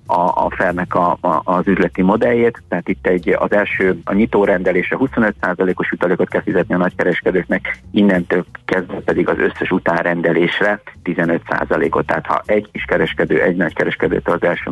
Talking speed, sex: 155 wpm, male